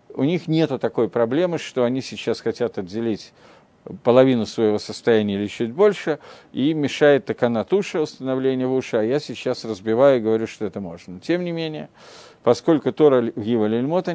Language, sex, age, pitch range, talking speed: Russian, male, 50-69, 115-150 Hz, 155 wpm